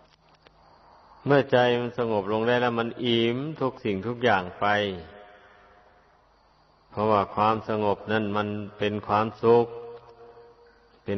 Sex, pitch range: male, 105-115 Hz